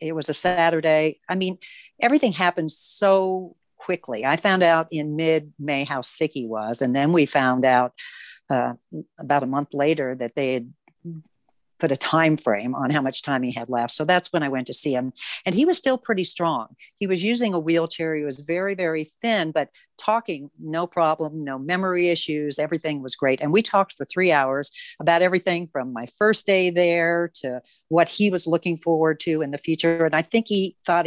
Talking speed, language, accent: 205 wpm, English, American